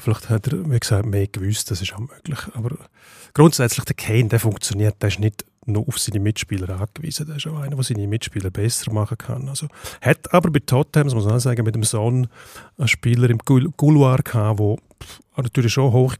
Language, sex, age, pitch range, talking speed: German, male, 30-49, 110-130 Hz, 210 wpm